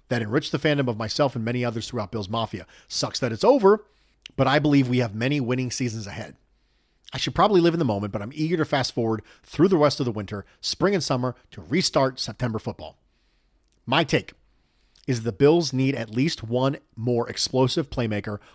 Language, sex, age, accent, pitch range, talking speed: English, male, 40-59, American, 110-145 Hz, 205 wpm